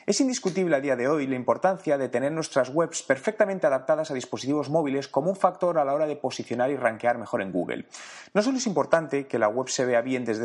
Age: 30-49